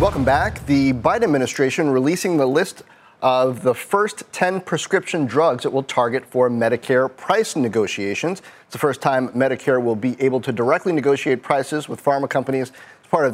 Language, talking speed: English, 175 wpm